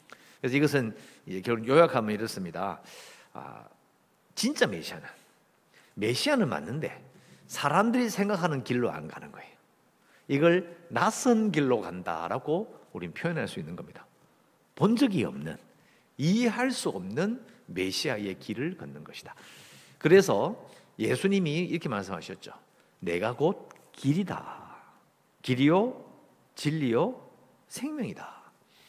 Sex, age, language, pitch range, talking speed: male, 50-69, English, 130-205 Hz, 95 wpm